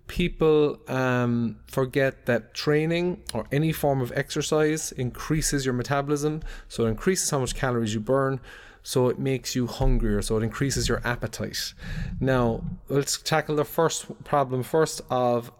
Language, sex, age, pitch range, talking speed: English, male, 30-49, 110-140 Hz, 150 wpm